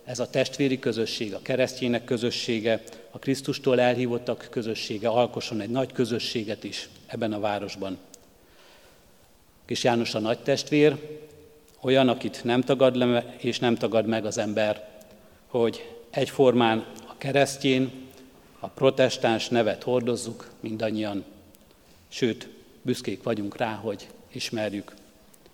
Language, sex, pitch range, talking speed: Hungarian, male, 115-130 Hz, 115 wpm